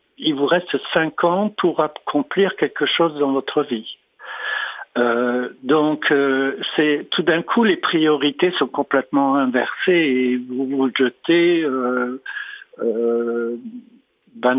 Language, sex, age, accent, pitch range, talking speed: French, male, 60-79, French, 135-170 Hz, 130 wpm